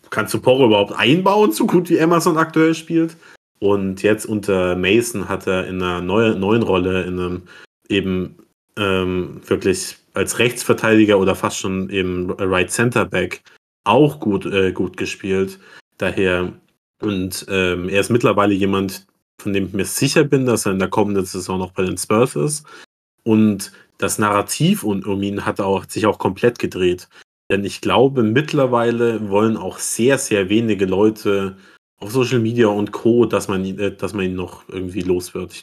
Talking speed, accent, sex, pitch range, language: 165 wpm, German, male, 95-115 Hz, German